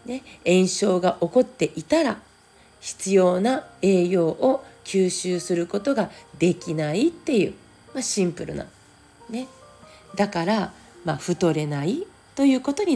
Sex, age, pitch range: female, 40-59, 155-245 Hz